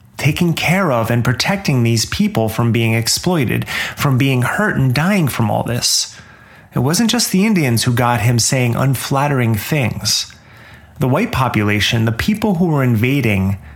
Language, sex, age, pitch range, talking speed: English, male, 30-49, 110-150 Hz, 160 wpm